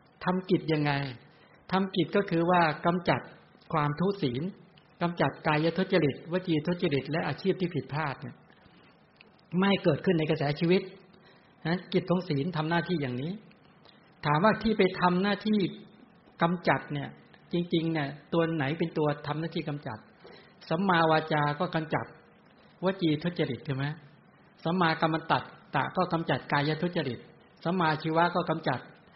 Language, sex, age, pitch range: English, male, 60-79, 150-180 Hz